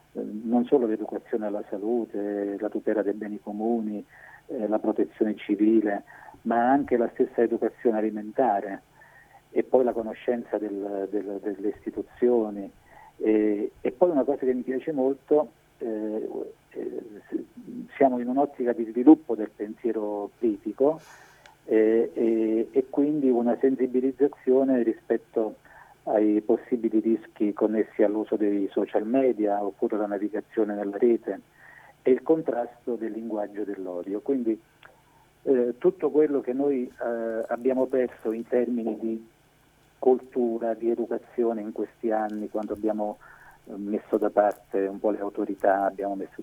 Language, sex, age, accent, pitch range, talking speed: Italian, male, 50-69, native, 105-130 Hz, 130 wpm